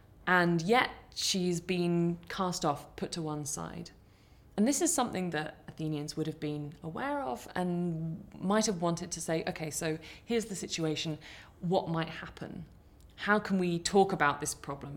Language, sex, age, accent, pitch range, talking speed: English, female, 20-39, British, 150-185 Hz, 170 wpm